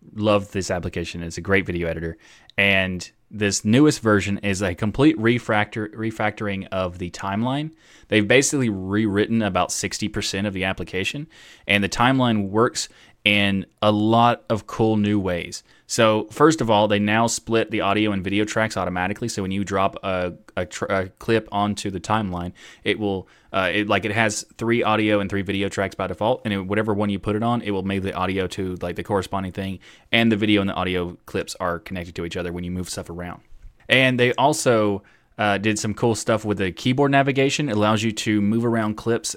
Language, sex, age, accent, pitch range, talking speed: English, male, 20-39, American, 95-110 Hz, 200 wpm